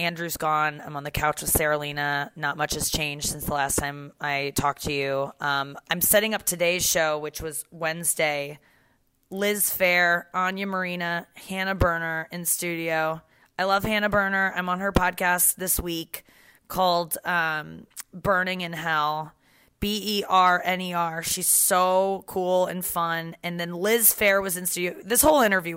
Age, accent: 30-49, American